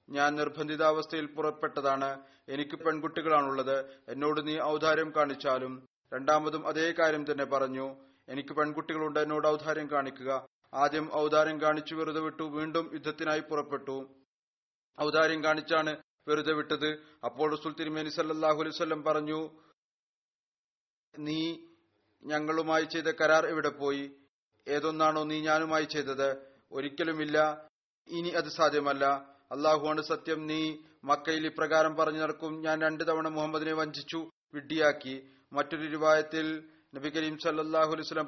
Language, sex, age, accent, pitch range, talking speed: Malayalam, male, 30-49, native, 145-155 Hz, 105 wpm